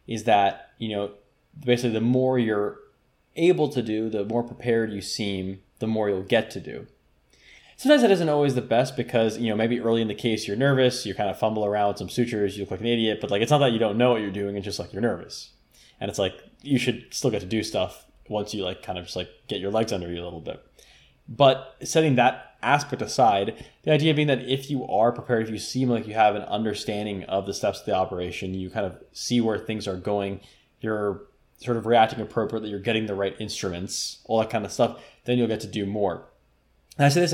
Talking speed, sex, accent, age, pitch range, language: 245 wpm, male, American, 10-29, 100-125 Hz, English